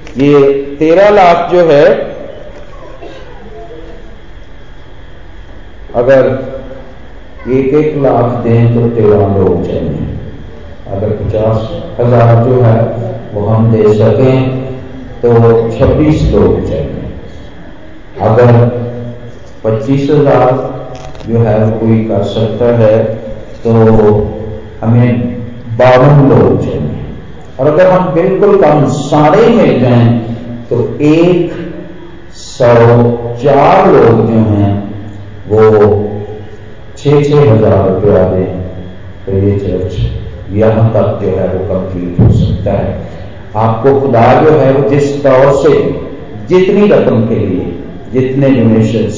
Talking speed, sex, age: 105 wpm, male, 40-59